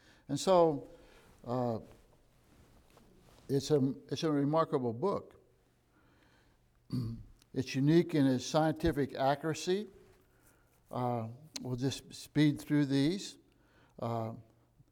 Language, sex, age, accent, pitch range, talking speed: English, male, 60-79, American, 130-170 Hz, 85 wpm